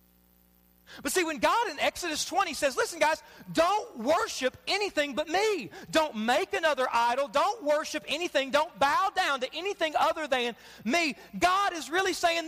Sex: male